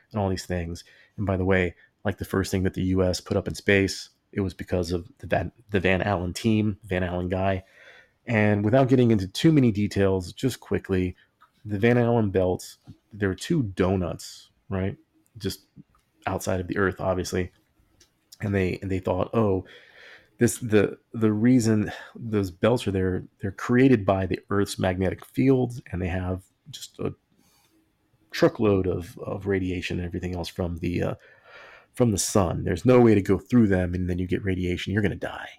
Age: 30-49